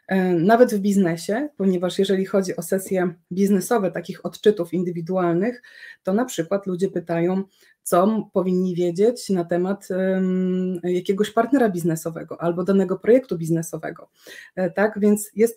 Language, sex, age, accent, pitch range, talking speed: Polish, female, 20-39, native, 180-215 Hz, 125 wpm